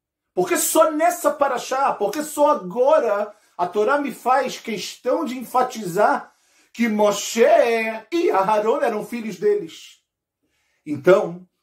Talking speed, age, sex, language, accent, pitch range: 120 wpm, 40-59, male, Portuguese, Brazilian, 175-280 Hz